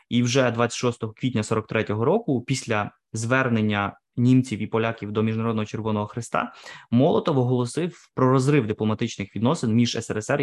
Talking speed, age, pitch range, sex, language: 130 wpm, 20-39, 110-130 Hz, male, Ukrainian